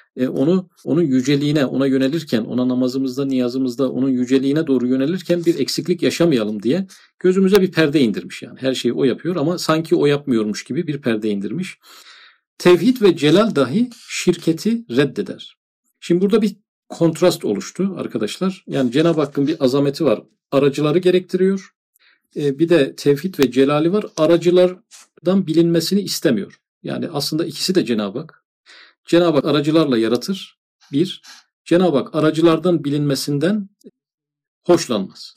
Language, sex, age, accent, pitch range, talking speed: Turkish, male, 50-69, native, 135-175 Hz, 135 wpm